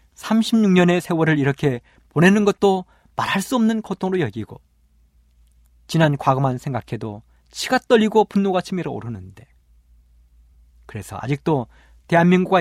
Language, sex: Korean, male